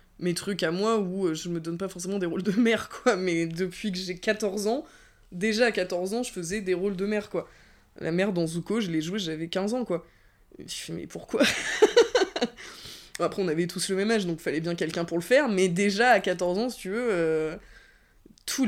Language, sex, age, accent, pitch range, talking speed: French, female, 20-39, French, 170-225 Hz, 230 wpm